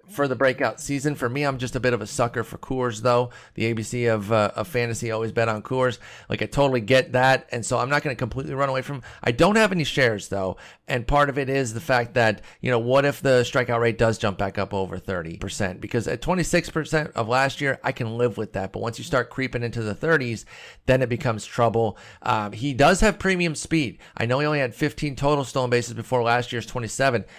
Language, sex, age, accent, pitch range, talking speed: English, male, 30-49, American, 115-140 Hz, 240 wpm